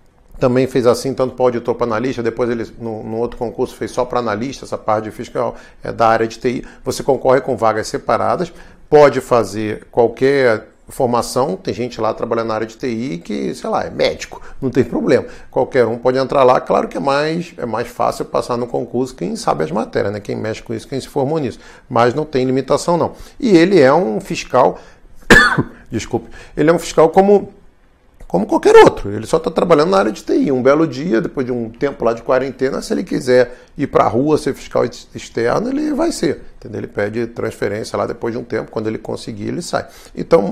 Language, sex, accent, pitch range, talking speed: Portuguese, male, Brazilian, 115-150 Hz, 220 wpm